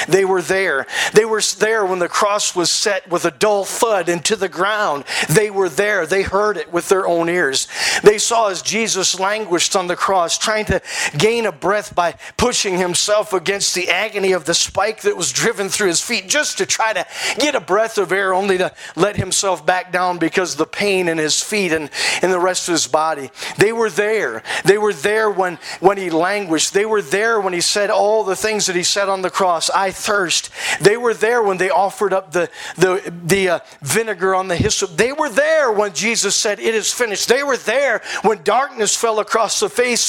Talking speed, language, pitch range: 215 wpm, English, 175-210 Hz